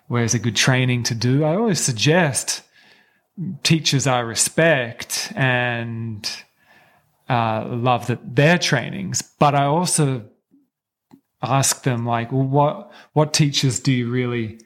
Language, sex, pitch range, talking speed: English, male, 120-155 Hz, 125 wpm